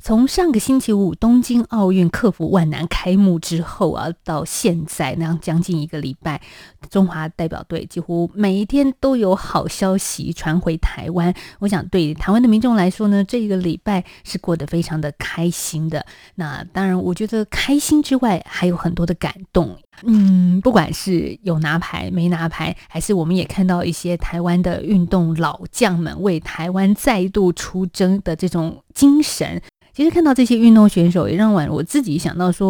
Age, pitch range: 20-39, 165-205 Hz